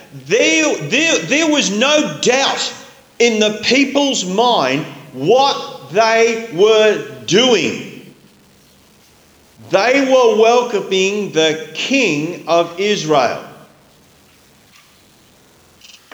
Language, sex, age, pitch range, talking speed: English, male, 50-69, 155-240 Hz, 75 wpm